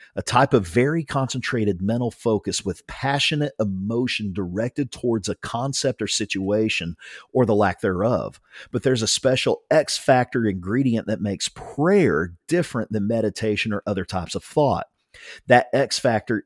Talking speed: 140 wpm